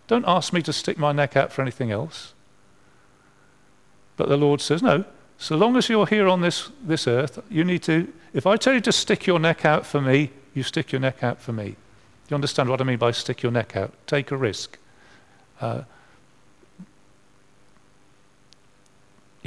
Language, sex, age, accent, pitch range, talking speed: English, male, 50-69, British, 125-180 Hz, 185 wpm